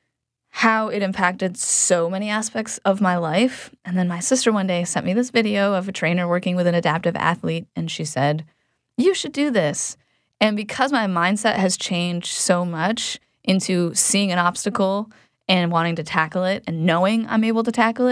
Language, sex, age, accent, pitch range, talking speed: English, female, 10-29, American, 170-210 Hz, 190 wpm